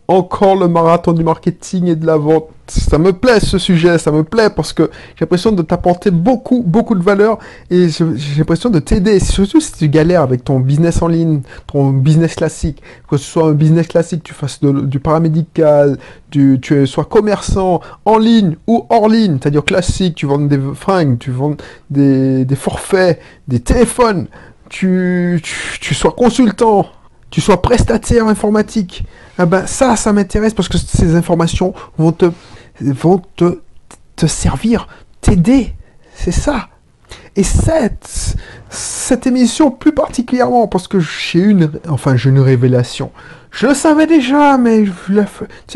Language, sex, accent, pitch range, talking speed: French, male, French, 155-215 Hz, 165 wpm